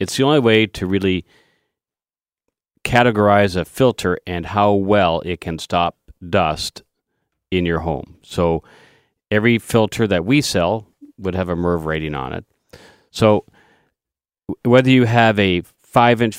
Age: 40-59